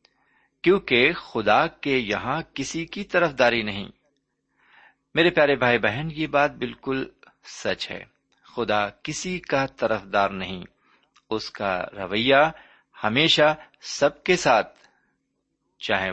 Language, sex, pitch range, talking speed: Urdu, male, 100-150 Hz, 110 wpm